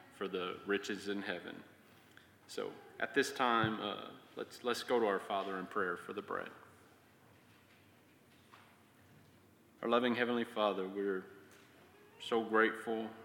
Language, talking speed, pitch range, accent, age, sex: English, 125 wpm, 100-110 Hz, American, 30-49, male